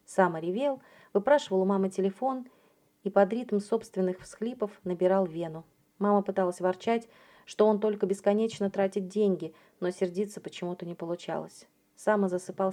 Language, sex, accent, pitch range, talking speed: Russian, female, native, 180-215 Hz, 135 wpm